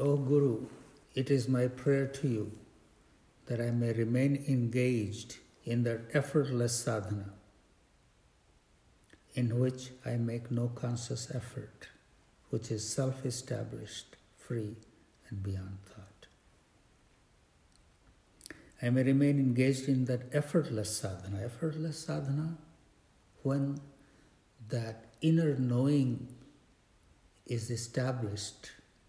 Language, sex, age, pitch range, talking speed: English, male, 60-79, 105-130 Hz, 95 wpm